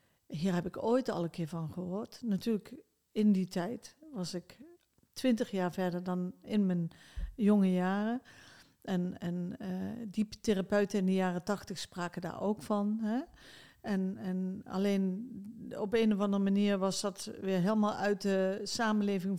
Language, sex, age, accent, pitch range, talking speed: Dutch, female, 40-59, Dutch, 190-225 Hz, 160 wpm